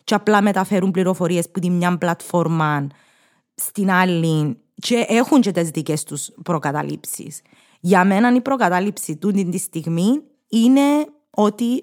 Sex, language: female, Greek